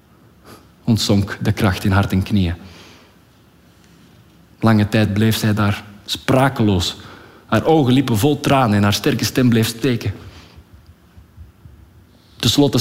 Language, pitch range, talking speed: Dutch, 105-125 Hz, 115 wpm